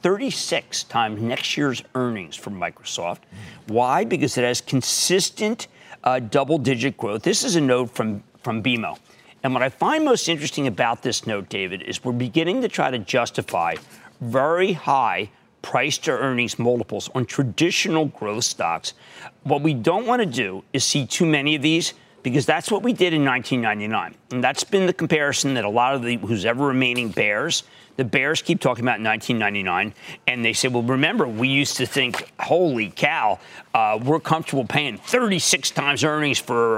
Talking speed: 170 wpm